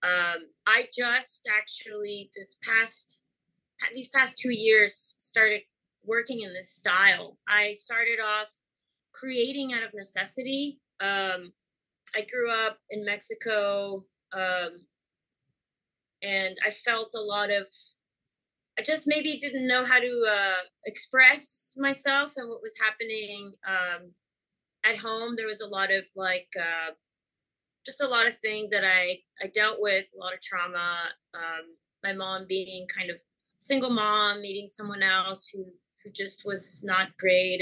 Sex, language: female, English